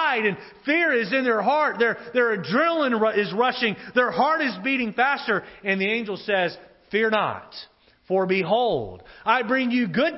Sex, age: male, 30-49